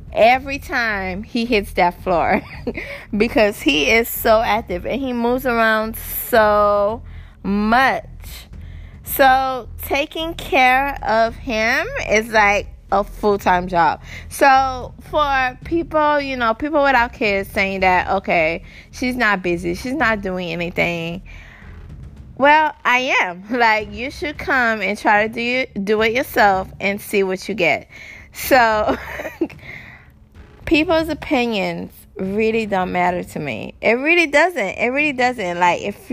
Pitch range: 190-255 Hz